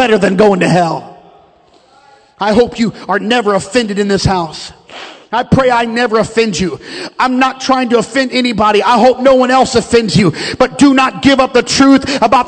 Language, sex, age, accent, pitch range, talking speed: English, male, 40-59, American, 250-320 Hz, 190 wpm